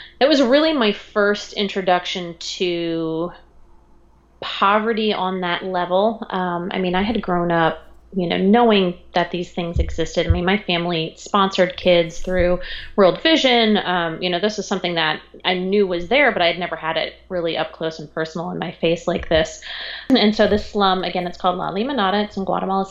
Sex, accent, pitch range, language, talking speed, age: female, American, 175-200 Hz, English, 190 wpm, 30-49